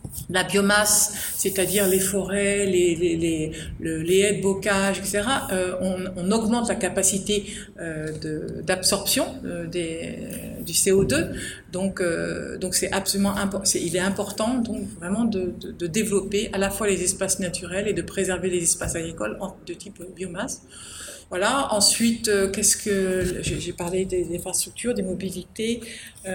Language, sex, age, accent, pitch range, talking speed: French, female, 50-69, French, 175-200 Hz, 150 wpm